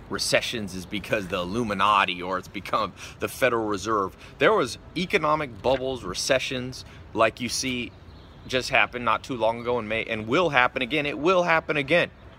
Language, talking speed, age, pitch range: English, 170 wpm, 30-49, 105-140 Hz